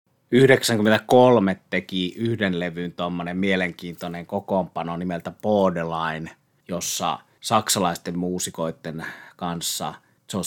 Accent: native